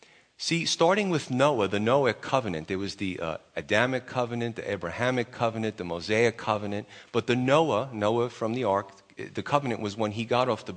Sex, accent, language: male, American, English